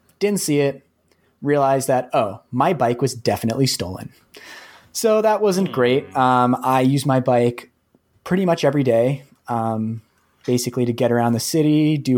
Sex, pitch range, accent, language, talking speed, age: male, 115-140 Hz, American, English, 160 wpm, 20-39